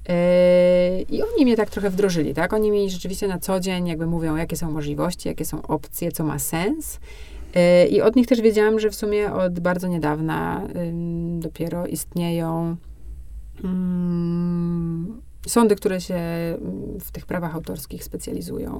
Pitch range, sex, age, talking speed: 165-195 Hz, female, 30-49, 145 wpm